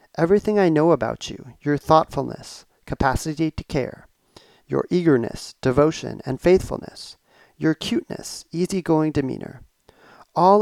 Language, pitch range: English, 135-175 Hz